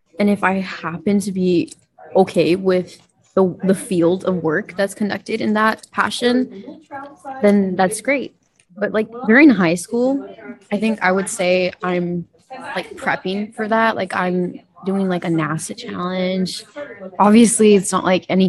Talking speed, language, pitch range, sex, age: 155 wpm, English, 180-215 Hz, female, 20-39